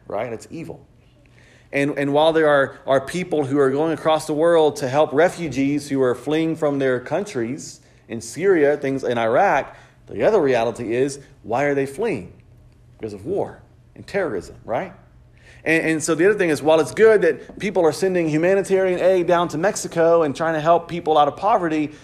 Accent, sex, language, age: American, male, English, 30-49